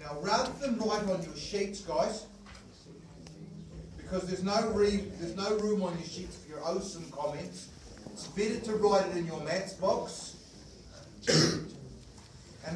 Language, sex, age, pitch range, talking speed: English, male, 40-59, 145-200 Hz, 150 wpm